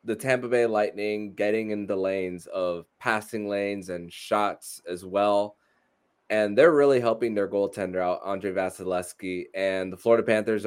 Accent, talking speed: American, 155 wpm